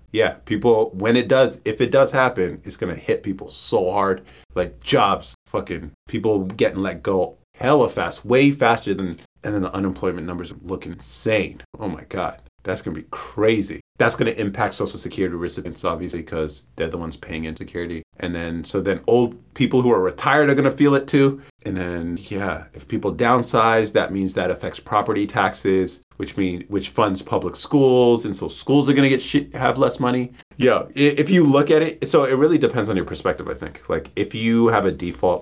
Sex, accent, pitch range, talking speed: male, American, 85-130 Hz, 205 wpm